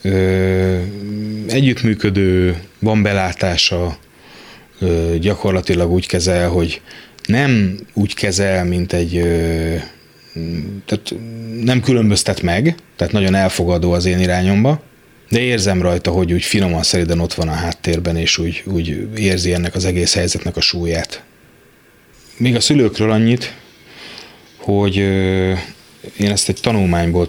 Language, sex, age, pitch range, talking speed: Hungarian, male, 30-49, 85-100 Hz, 115 wpm